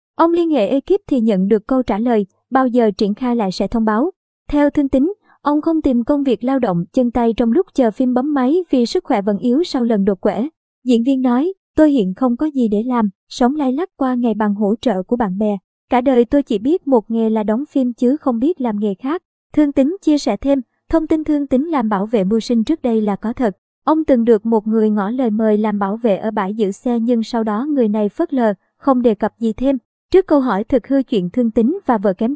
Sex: male